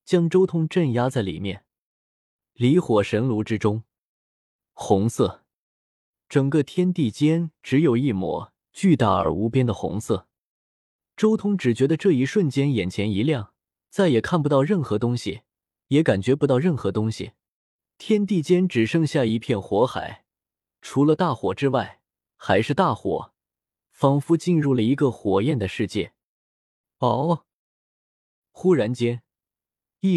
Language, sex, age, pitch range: Chinese, male, 20-39, 115-170 Hz